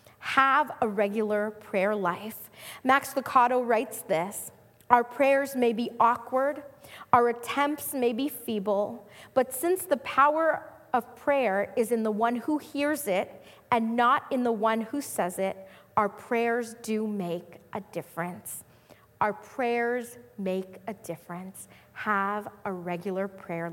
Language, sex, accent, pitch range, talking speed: English, female, American, 210-280 Hz, 140 wpm